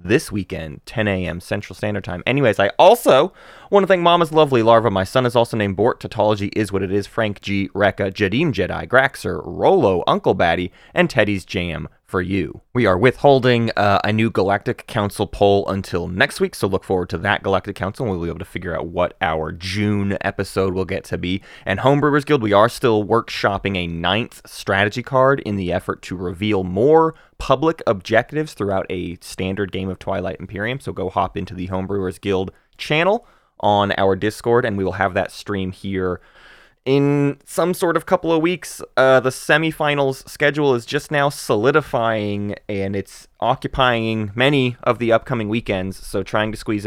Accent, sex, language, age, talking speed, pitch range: American, male, English, 20-39, 185 wpm, 95-135 Hz